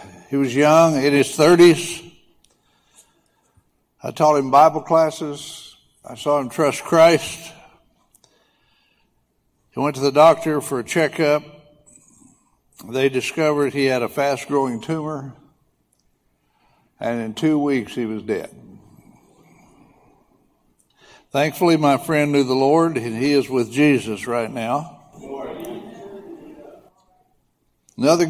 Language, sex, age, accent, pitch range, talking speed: English, male, 60-79, American, 125-150 Hz, 110 wpm